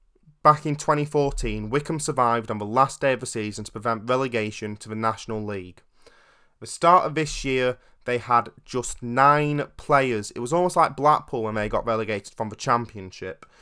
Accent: British